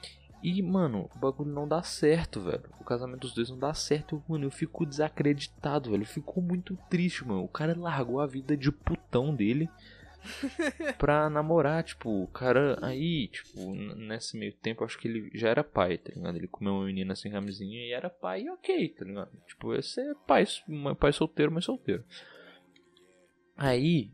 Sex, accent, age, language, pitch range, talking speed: male, Brazilian, 20-39, Portuguese, 100-160 Hz, 180 wpm